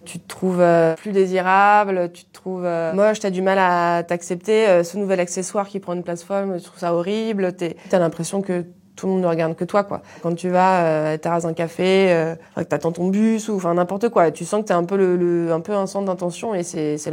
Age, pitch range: 20-39, 175-205 Hz